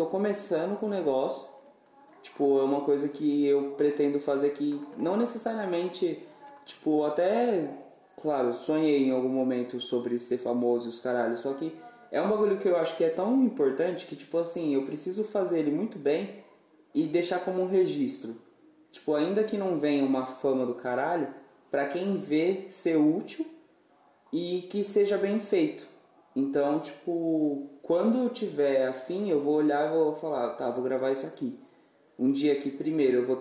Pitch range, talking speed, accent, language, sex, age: 130-180 Hz, 175 wpm, Brazilian, Portuguese, male, 20-39